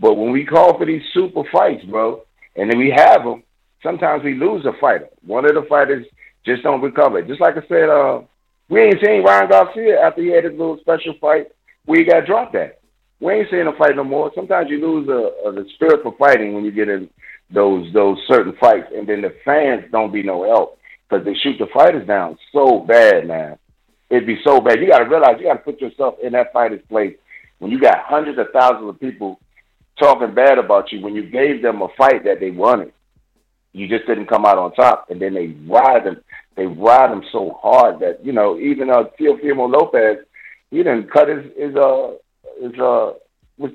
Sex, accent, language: male, American, English